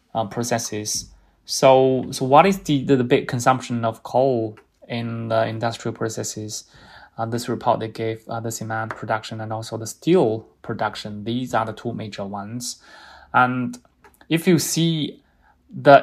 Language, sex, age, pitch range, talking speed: English, male, 20-39, 110-125 Hz, 155 wpm